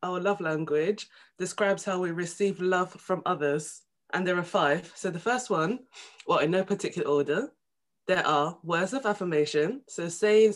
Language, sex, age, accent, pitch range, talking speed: English, female, 20-39, British, 170-210 Hz, 170 wpm